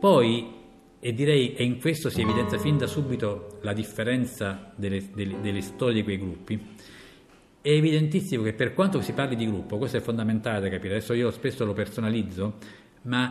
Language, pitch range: Italian, 105-135 Hz